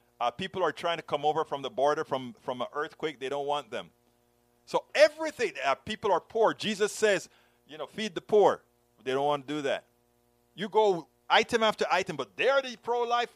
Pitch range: 120-200 Hz